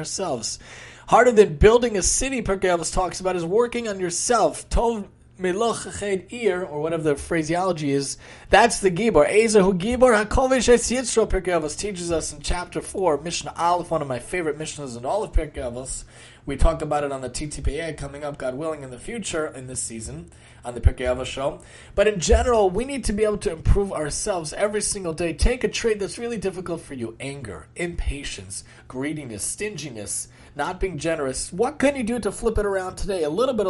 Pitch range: 145-195 Hz